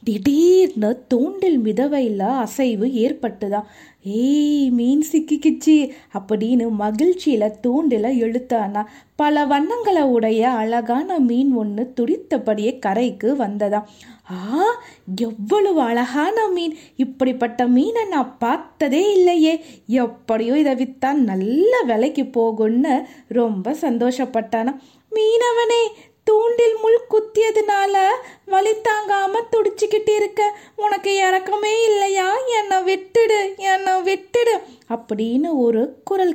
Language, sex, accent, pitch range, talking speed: Tamil, female, native, 240-375 Hz, 75 wpm